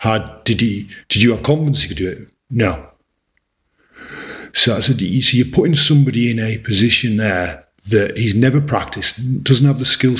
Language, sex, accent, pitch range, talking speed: English, male, British, 105-125 Hz, 190 wpm